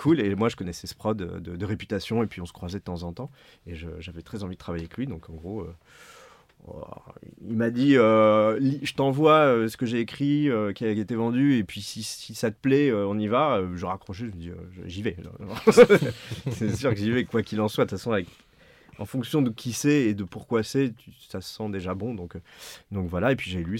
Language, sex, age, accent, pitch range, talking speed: French, male, 30-49, French, 90-115 Hz, 270 wpm